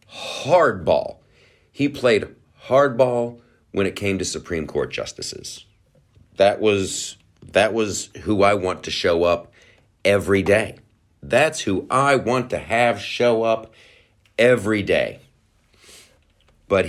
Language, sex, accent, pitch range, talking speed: English, male, American, 90-115 Hz, 120 wpm